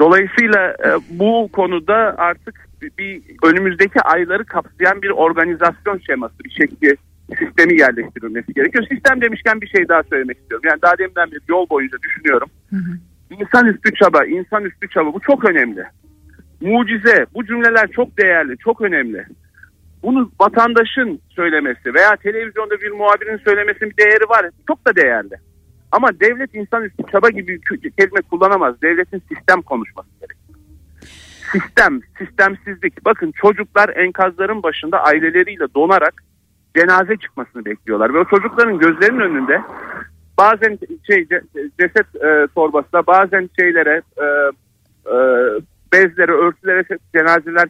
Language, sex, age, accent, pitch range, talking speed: Turkish, male, 50-69, native, 165-225 Hz, 120 wpm